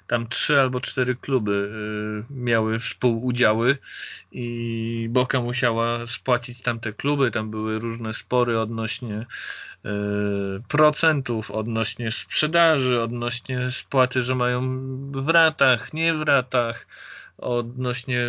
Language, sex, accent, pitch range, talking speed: Polish, male, native, 110-130 Hz, 100 wpm